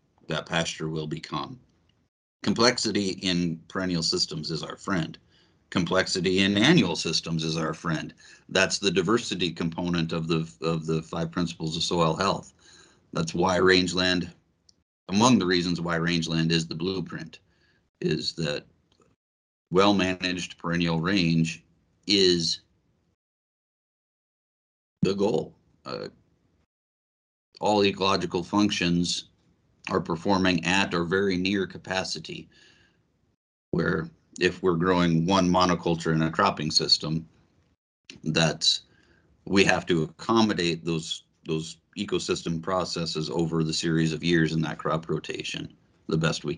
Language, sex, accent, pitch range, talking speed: English, male, American, 80-95 Hz, 115 wpm